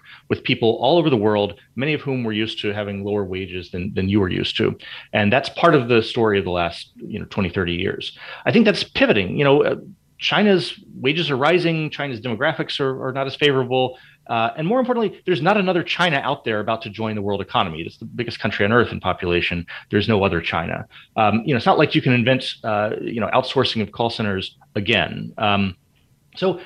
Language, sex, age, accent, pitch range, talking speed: English, male, 30-49, American, 105-150 Hz, 225 wpm